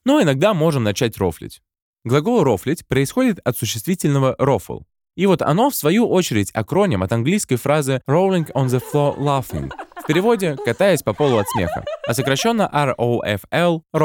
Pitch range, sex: 115-180 Hz, male